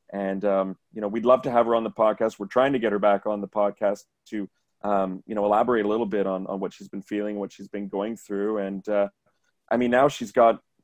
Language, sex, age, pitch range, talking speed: English, male, 30-49, 100-110 Hz, 260 wpm